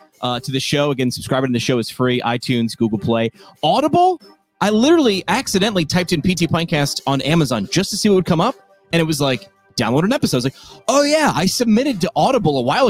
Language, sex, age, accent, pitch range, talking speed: English, male, 30-49, American, 125-180 Hz, 230 wpm